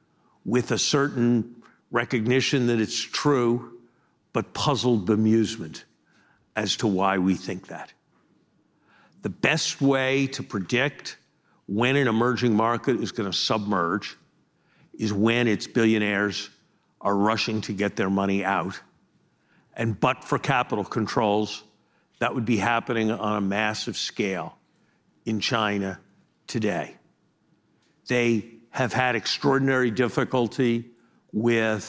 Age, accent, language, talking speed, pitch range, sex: 50-69, American, English, 115 wpm, 105-120 Hz, male